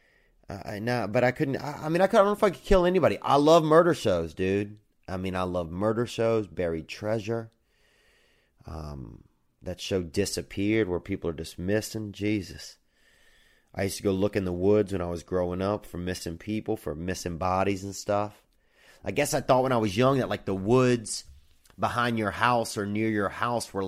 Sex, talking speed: male, 200 wpm